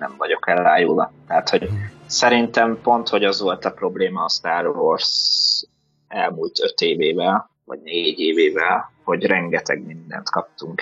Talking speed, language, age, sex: 140 wpm, Hungarian, 20-39, male